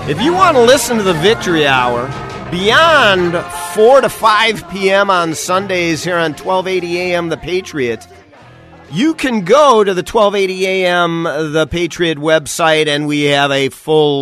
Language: English